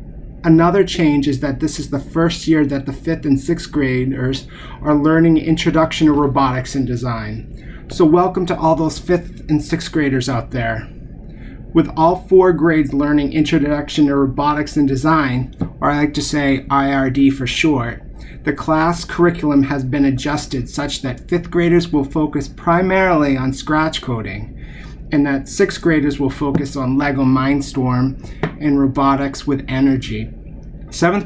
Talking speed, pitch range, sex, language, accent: 155 wpm, 135-155 Hz, male, English, American